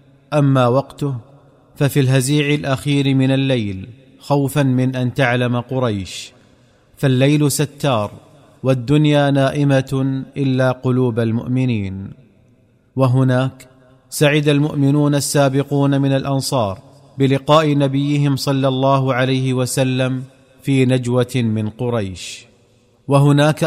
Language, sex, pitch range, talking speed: Arabic, male, 130-140 Hz, 90 wpm